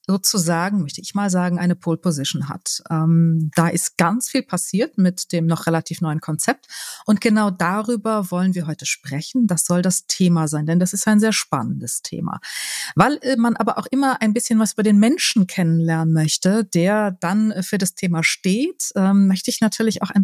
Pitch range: 175-220 Hz